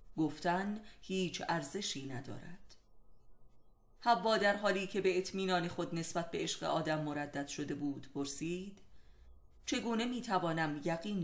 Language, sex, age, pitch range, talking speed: Persian, female, 30-49, 150-190 Hz, 125 wpm